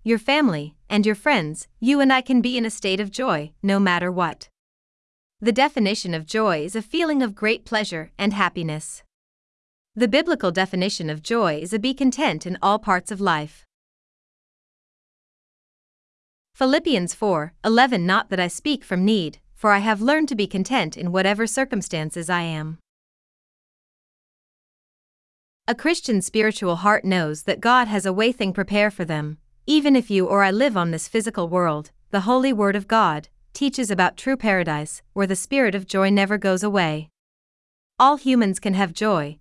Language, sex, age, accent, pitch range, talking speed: English, female, 30-49, American, 175-235 Hz, 170 wpm